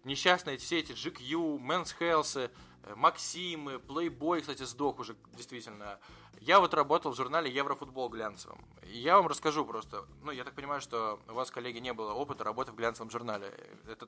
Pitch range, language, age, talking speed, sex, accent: 115-150 Hz, Russian, 20-39, 165 wpm, male, native